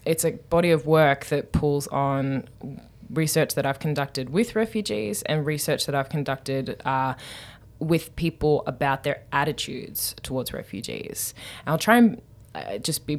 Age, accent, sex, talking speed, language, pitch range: 20-39, Australian, female, 150 wpm, English, 135-160 Hz